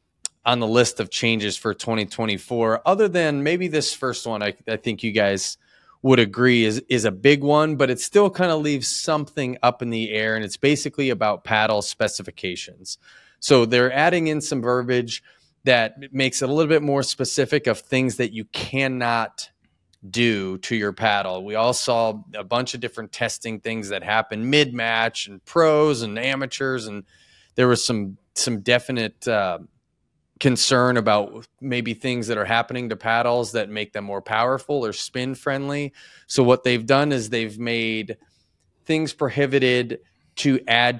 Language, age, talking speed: English, 20-39, 170 wpm